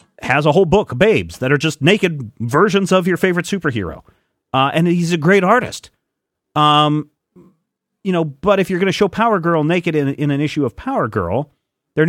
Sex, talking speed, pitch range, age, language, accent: male, 200 wpm, 115-155 Hz, 40-59, English, American